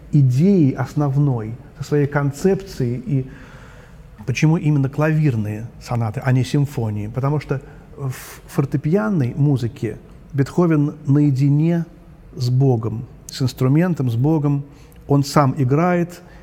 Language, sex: Russian, male